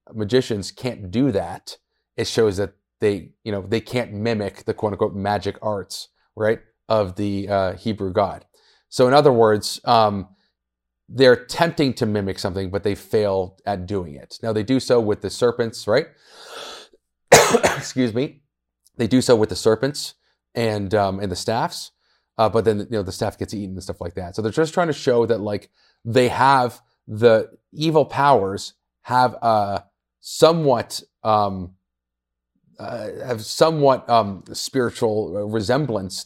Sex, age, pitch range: male, 30-49, 100-120 Hz